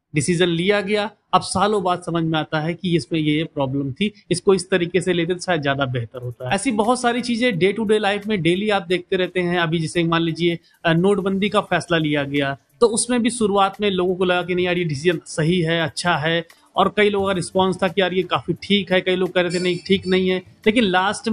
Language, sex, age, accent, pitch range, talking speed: Hindi, male, 30-49, native, 165-205 Hz, 255 wpm